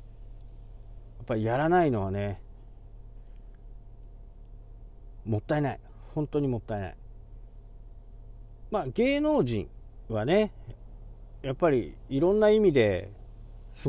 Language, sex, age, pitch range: Japanese, male, 40-59, 110-130 Hz